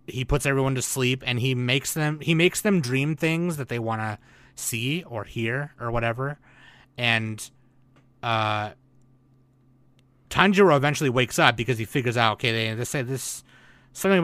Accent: American